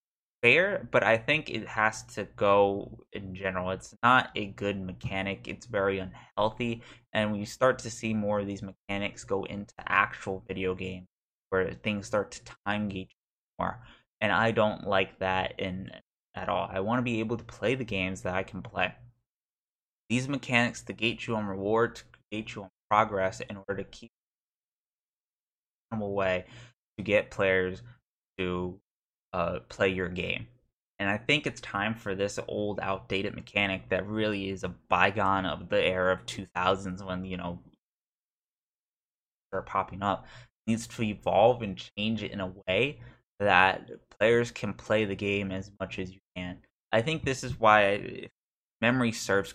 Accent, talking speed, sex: American, 170 wpm, male